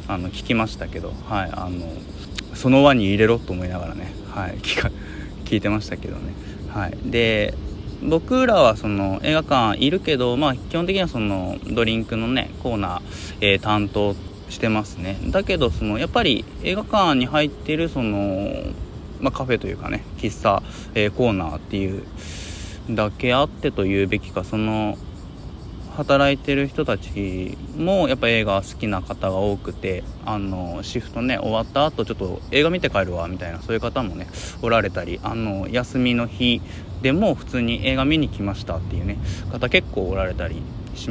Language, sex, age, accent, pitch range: Japanese, male, 20-39, native, 95-120 Hz